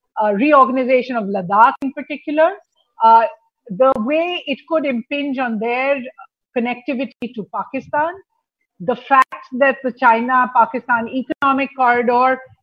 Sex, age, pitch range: female, 50-69, 225-290 Hz